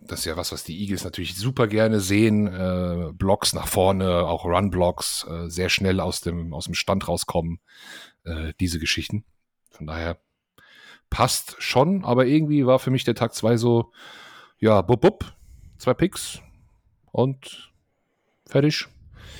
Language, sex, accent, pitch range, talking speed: German, male, German, 90-110 Hz, 150 wpm